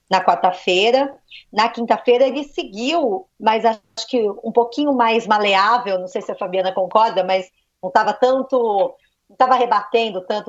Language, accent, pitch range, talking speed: Portuguese, Brazilian, 190-255 Hz, 155 wpm